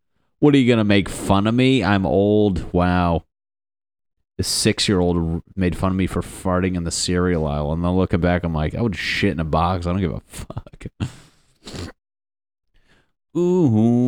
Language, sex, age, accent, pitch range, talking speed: English, male, 30-49, American, 85-100 Hz, 190 wpm